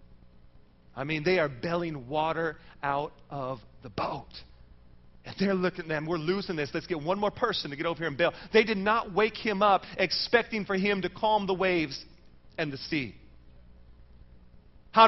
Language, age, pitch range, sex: English, 40-59, 135-210 Hz, male